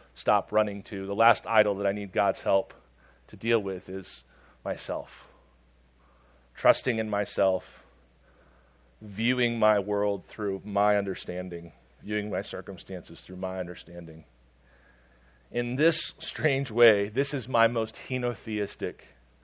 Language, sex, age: English, male, 40-59